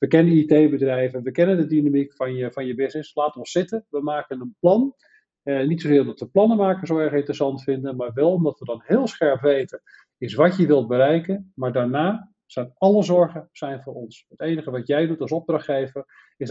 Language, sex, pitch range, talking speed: Dutch, male, 135-170 Hz, 215 wpm